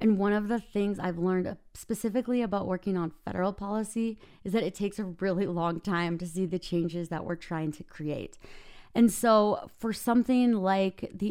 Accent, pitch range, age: American, 175-210 Hz, 30-49